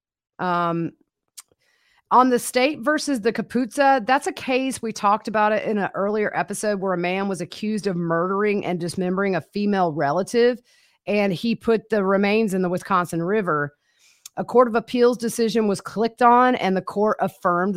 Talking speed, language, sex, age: 170 wpm, English, female, 40-59